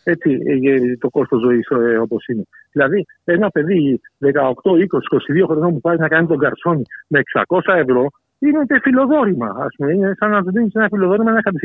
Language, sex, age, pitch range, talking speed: Greek, male, 60-79, 145-210 Hz, 175 wpm